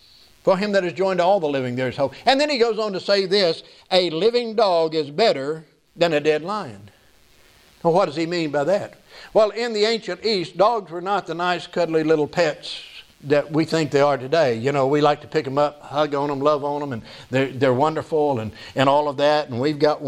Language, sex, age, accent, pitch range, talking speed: English, male, 60-79, American, 145-220 Hz, 240 wpm